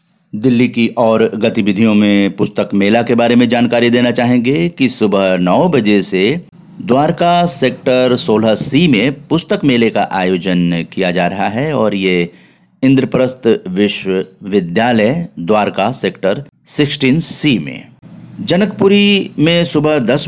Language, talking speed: Hindi, 130 wpm